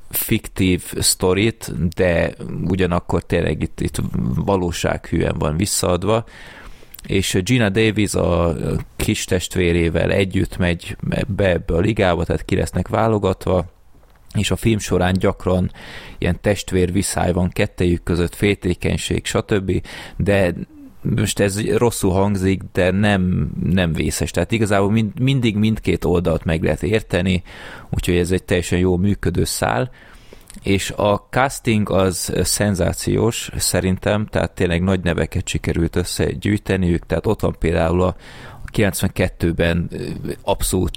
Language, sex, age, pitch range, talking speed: Hungarian, male, 30-49, 85-105 Hz, 120 wpm